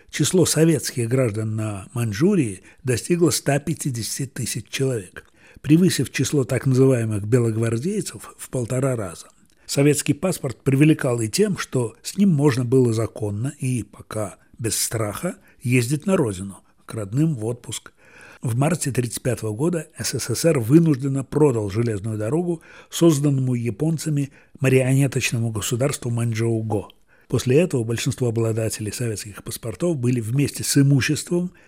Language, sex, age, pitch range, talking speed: Russian, male, 60-79, 115-155 Hz, 120 wpm